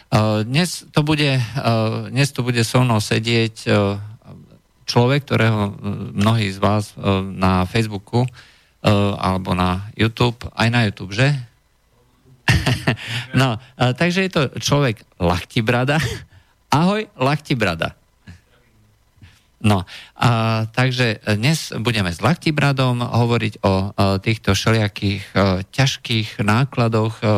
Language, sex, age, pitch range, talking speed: Slovak, male, 50-69, 95-120 Hz, 95 wpm